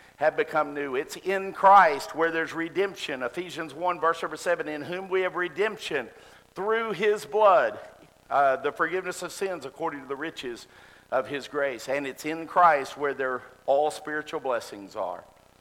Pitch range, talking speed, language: 150-185 Hz, 170 wpm, English